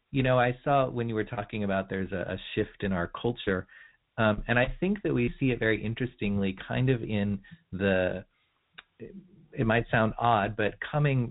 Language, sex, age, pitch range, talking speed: English, male, 40-59, 100-120 Hz, 190 wpm